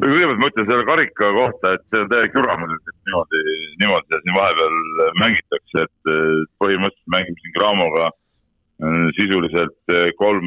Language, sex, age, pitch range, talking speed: English, male, 60-79, 75-95 Hz, 130 wpm